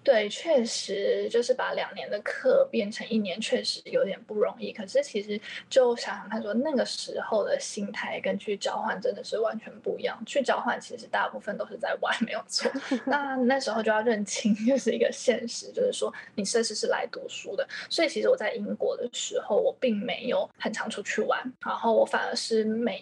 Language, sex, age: Chinese, female, 20-39